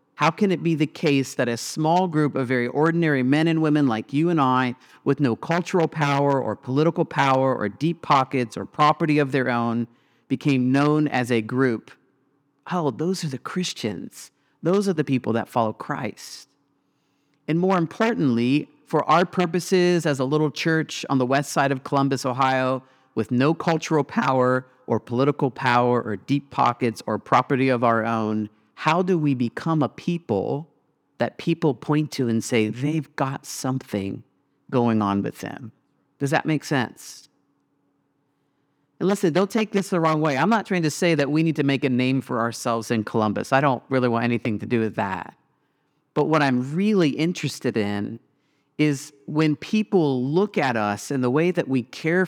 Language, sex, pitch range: English, male, 125-160 Hz